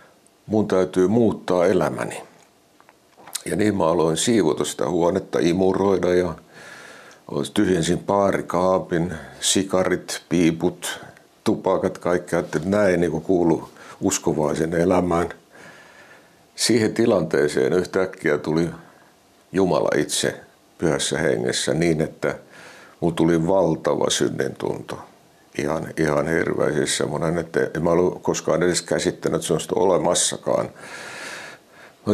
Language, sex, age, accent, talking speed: Finnish, male, 60-79, native, 105 wpm